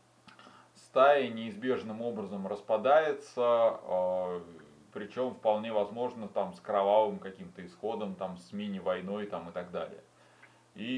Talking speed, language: 105 wpm, Russian